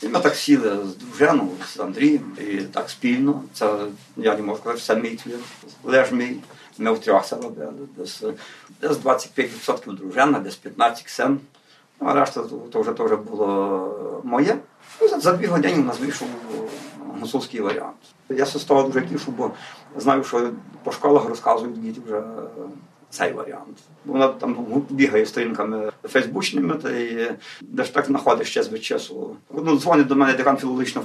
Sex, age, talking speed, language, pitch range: male, 50-69, 155 wpm, Ukrainian, 110-140 Hz